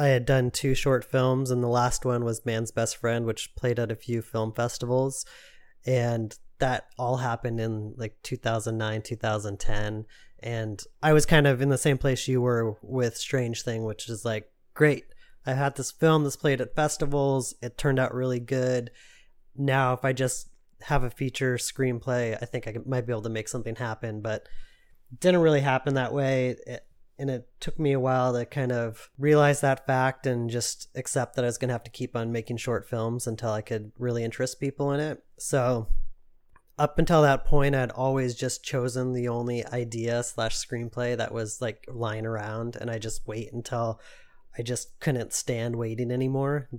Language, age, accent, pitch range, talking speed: English, 20-39, American, 115-135 Hz, 195 wpm